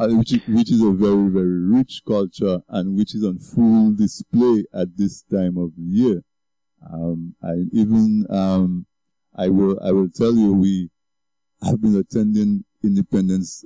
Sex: male